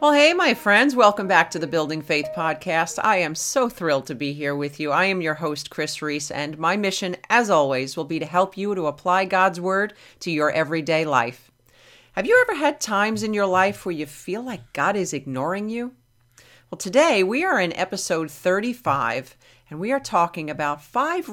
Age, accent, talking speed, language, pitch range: 40-59, American, 205 wpm, English, 140-210 Hz